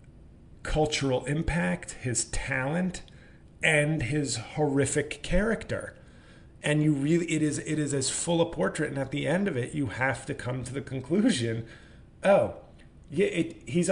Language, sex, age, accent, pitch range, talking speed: English, male, 30-49, American, 115-155 Hz, 150 wpm